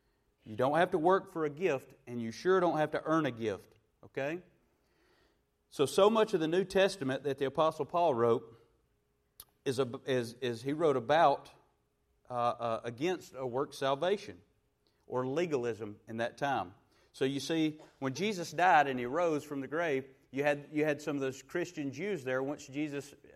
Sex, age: male, 30-49